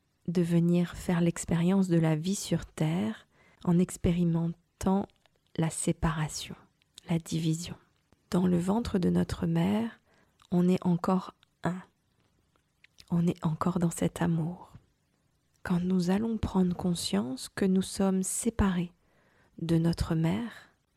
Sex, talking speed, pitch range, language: female, 125 wpm, 165-185 Hz, French